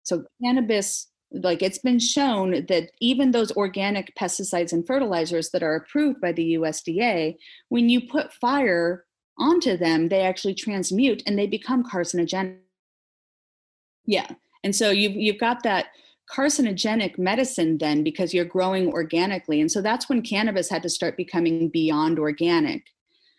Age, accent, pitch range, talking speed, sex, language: 30-49, American, 165-225 Hz, 145 wpm, female, English